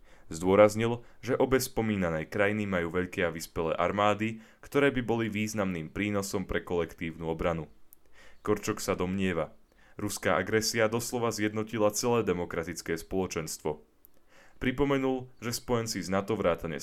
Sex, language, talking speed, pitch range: male, Slovak, 120 wpm, 90-115 Hz